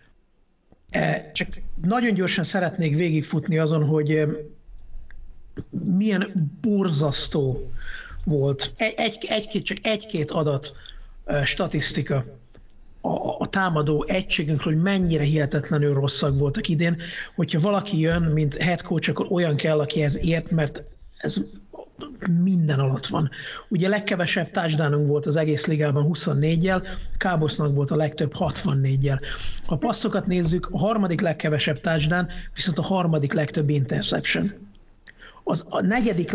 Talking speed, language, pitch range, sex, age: 120 wpm, Hungarian, 150-190 Hz, male, 60-79